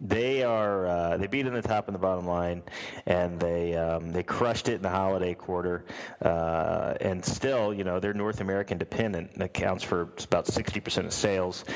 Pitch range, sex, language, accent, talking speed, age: 90-115 Hz, male, English, American, 190 wpm, 30-49